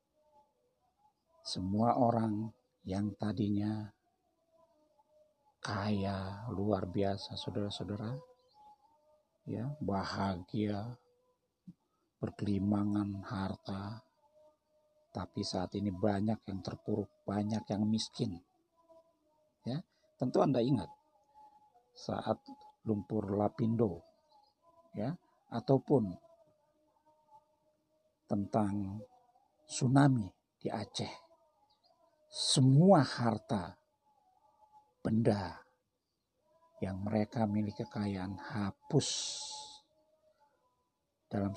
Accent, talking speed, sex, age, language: native, 60 wpm, male, 50-69, Indonesian